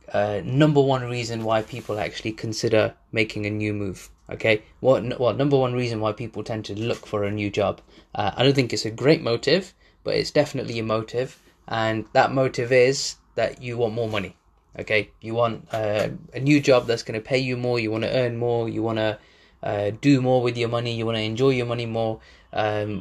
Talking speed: 205 wpm